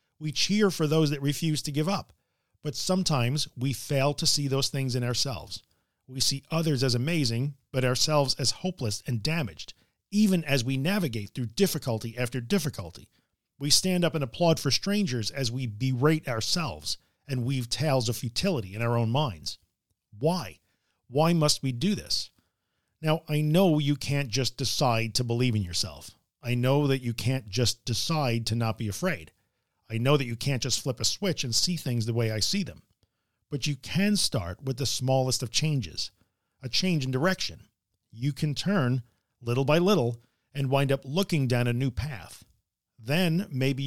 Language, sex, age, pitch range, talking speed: English, male, 40-59, 115-150 Hz, 180 wpm